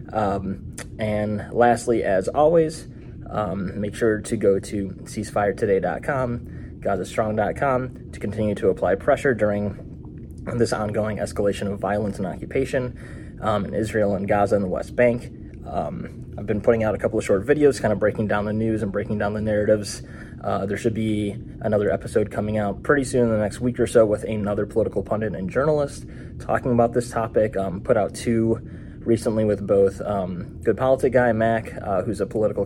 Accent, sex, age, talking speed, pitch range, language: American, male, 20-39, 180 wpm, 105-120 Hz, English